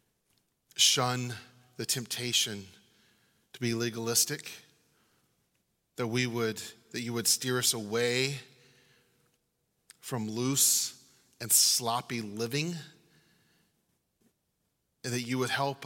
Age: 30-49